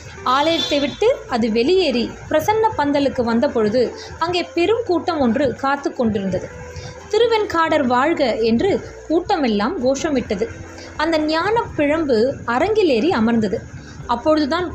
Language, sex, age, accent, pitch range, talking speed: Tamil, female, 20-39, native, 235-330 Hz, 100 wpm